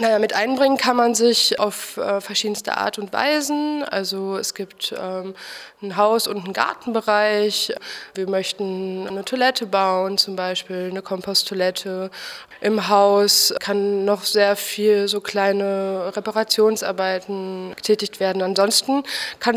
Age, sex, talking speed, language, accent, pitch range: 20-39, female, 125 wpm, German, German, 195-225 Hz